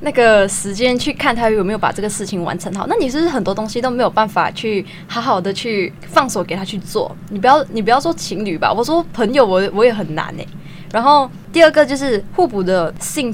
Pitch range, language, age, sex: 180-240 Hz, Chinese, 10-29, female